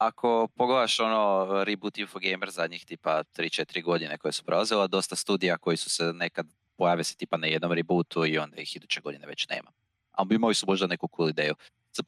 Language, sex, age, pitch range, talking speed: Croatian, male, 20-39, 85-115 Hz, 195 wpm